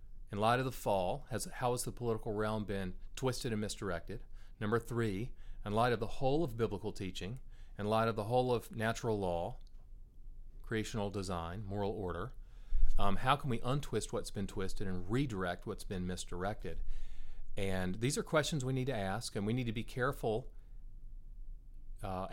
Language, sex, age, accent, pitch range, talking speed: English, male, 40-59, American, 95-115 Hz, 170 wpm